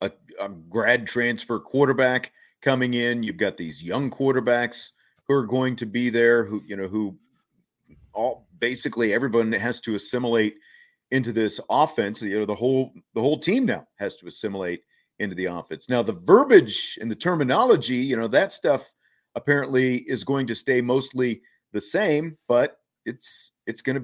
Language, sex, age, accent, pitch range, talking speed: English, male, 40-59, American, 110-140 Hz, 165 wpm